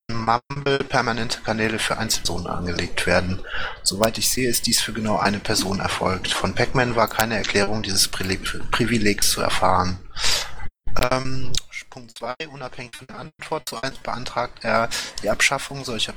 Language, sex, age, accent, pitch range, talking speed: German, male, 30-49, German, 100-120 Hz, 140 wpm